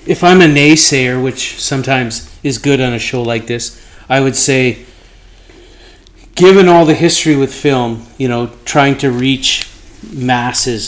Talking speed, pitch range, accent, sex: 155 wpm, 115-145 Hz, American, male